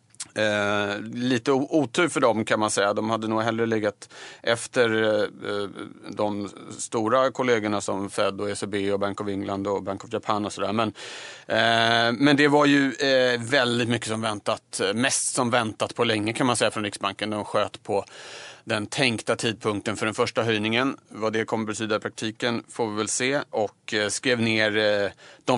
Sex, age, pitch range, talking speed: male, 30-49, 105-120 Hz, 190 wpm